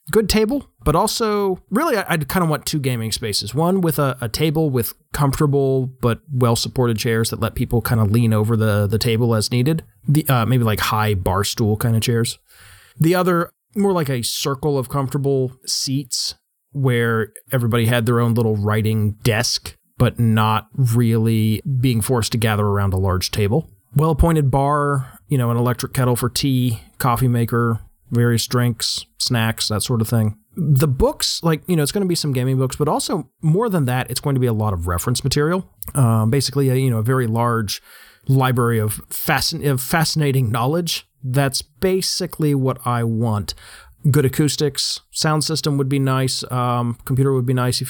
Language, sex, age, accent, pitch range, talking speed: English, male, 30-49, American, 115-145 Hz, 185 wpm